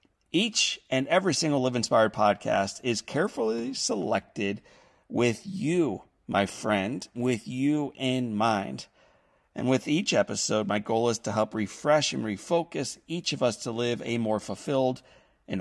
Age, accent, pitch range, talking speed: 40-59, American, 105-135 Hz, 150 wpm